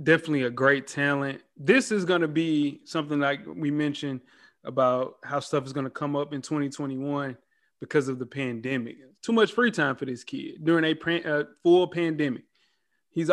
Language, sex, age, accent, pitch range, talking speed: English, male, 20-39, American, 145-175 Hz, 175 wpm